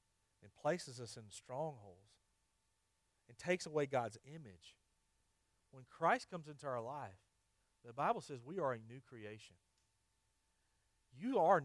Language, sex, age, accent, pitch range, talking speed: English, male, 40-59, American, 100-145 Hz, 135 wpm